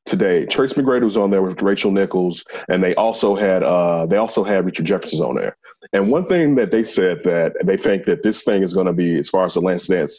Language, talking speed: English, 245 wpm